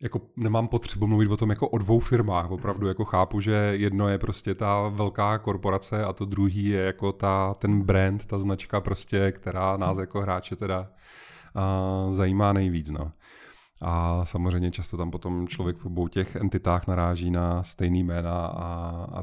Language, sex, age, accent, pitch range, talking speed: Czech, male, 30-49, native, 95-105 Hz, 175 wpm